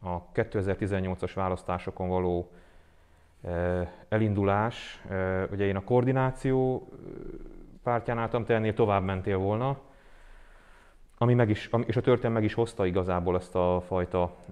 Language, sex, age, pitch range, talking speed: Hungarian, male, 30-49, 90-115 Hz, 110 wpm